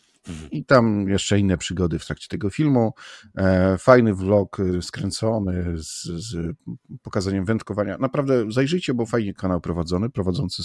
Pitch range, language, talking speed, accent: 85-110 Hz, Polish, 130 wpm, native